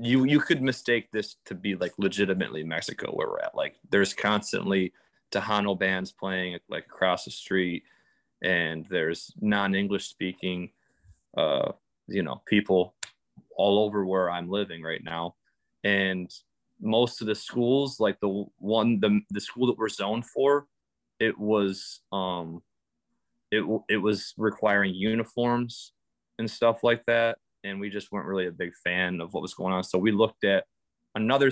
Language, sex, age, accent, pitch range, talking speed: English, male, 20-39, American, 95-120 Hz, 160 wpm